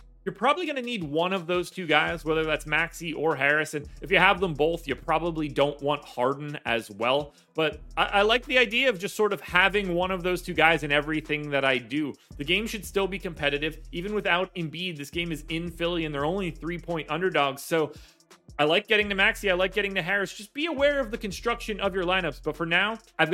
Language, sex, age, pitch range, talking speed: English, male, 30-49, 160-210 Hz, 235 wpm